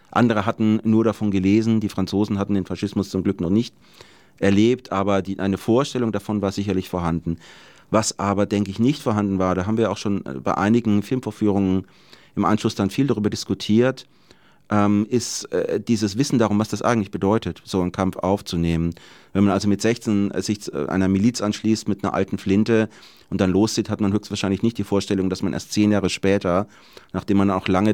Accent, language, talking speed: German, German, 195 wpm